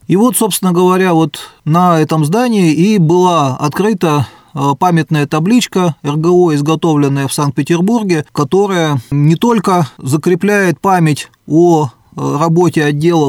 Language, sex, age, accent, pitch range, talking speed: Russian, male, 20-39, native, 140-175 Hz, 110 wpm